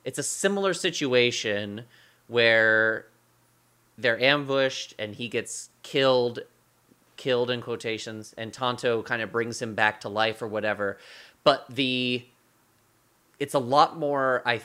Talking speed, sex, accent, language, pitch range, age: 130 wpm, male, American, English, 110-140 Hz, 30-49